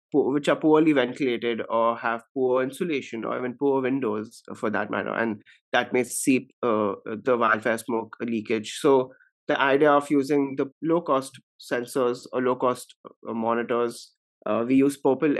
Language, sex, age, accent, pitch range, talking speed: English, male, 30-49, Indian, 115-135 Hz, 150 wpm